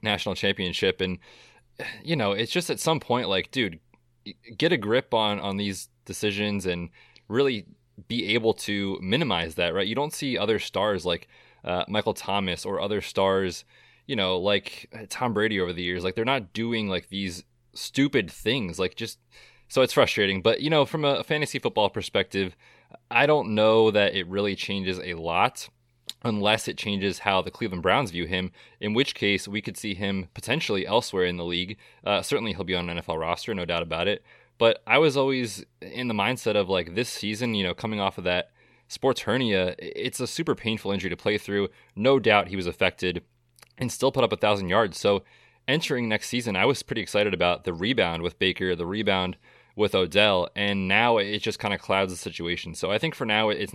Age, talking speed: 20-39, 200 wpm